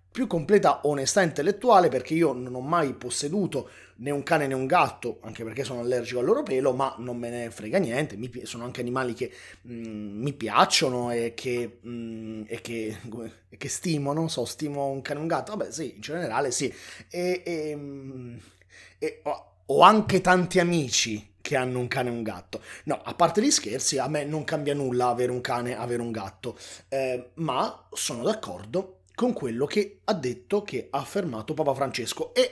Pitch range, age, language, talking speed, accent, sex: 115-160 Hz, 30-49, Italian, 195 wpm, native, male